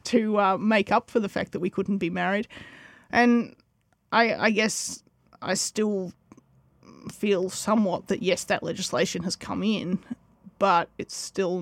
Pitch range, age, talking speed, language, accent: 185-245 Hz, 30-49, 155 wpm, English, Australian